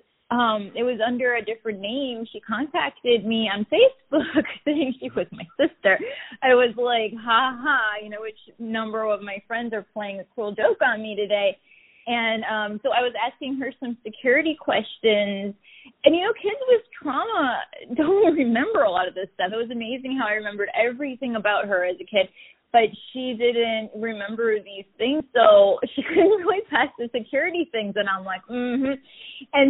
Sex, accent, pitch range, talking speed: female, American, 215-290 Hz, 185 wpm